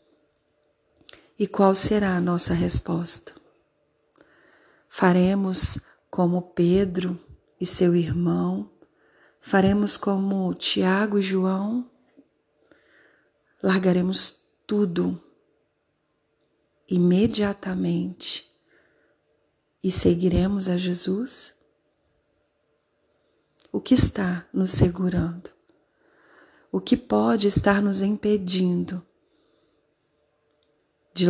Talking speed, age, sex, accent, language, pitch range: 70 wpm, 40-59, female, Brazilian, Portuguese, 150-200 Hz